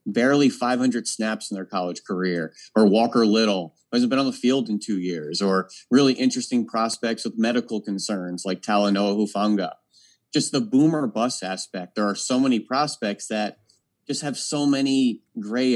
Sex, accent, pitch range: male, American, 100-125 Hz